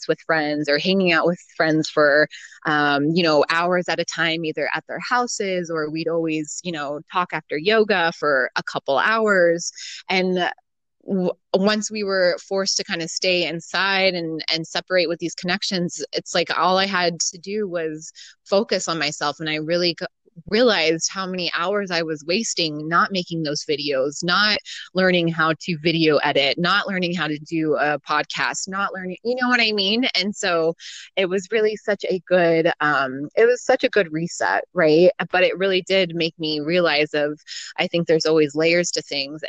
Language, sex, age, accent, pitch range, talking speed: English, female, 20-39, American, 155-185 Hz, 185 wpm